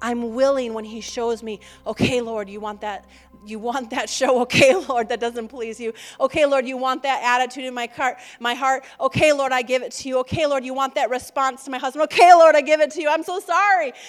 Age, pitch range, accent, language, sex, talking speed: 30-49, 220-305 Hz, American, English, female, 240 wpm